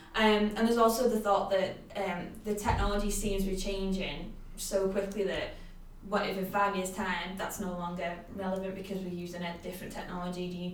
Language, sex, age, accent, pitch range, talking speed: English, female, 10-29, British, 180-200 Hz, 200 wpm